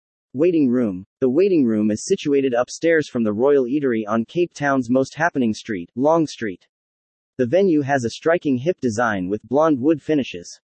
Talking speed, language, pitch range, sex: 175 wpm, English, 115-160 Hz, male